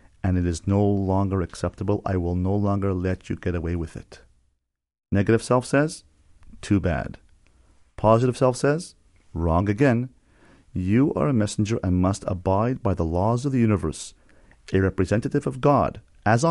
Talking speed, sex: 160 wpm, male